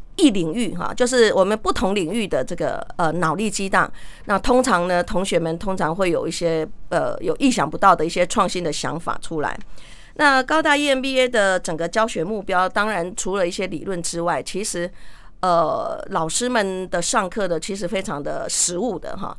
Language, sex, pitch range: Chinese, female, 175-235 Hz